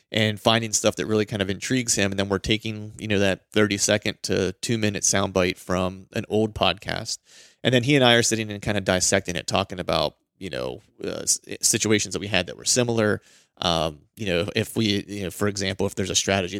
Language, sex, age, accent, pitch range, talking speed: English, male, 30-49, American, 95-110 Hz, 220 wpm